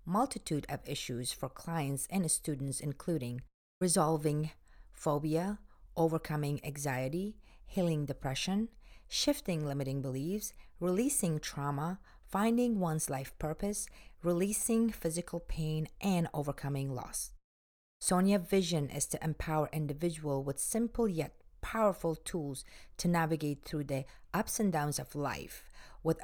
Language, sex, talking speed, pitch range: English, female, 115 wpm, 145-175 Hz